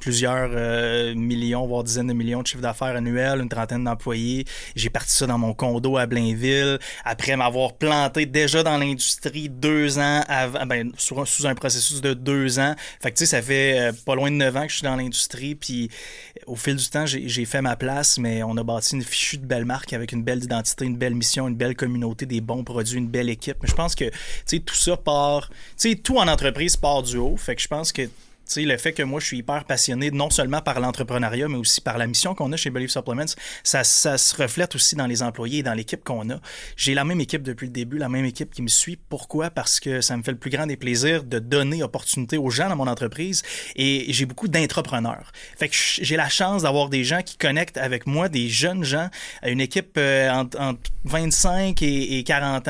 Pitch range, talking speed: 125-150 Hz, 230 wpm